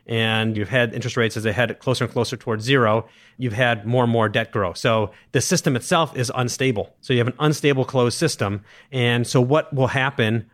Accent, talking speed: American, 215 wpm